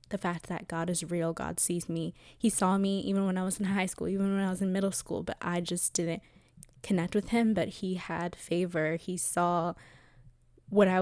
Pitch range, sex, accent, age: 165-195 Hz, female, American, 10-29